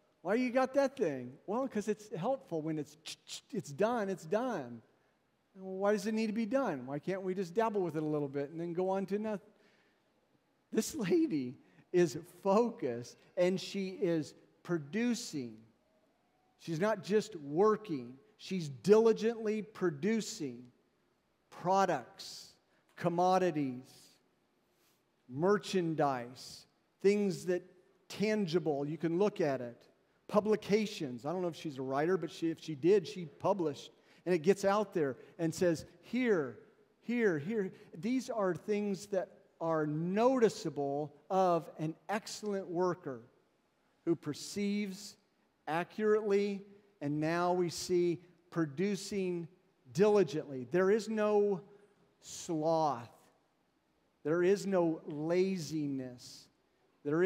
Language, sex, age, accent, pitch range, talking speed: English, male, 50-69, American, 155-205 Hz, 125 wpm